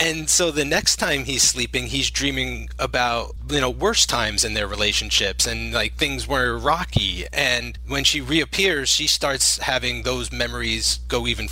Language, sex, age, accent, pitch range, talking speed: English, male, 30-49, American, 105-145 Hz, 170 wpm